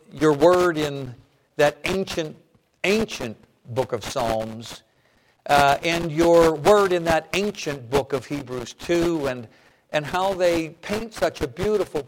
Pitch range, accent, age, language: 125-160 Hz, American, 60-79, English